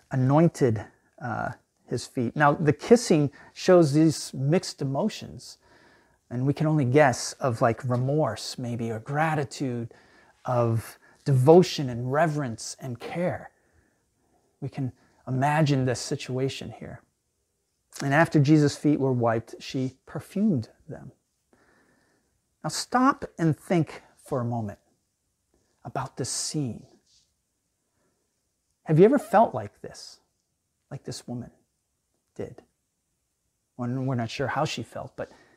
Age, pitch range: 30-49, 125-155 Hz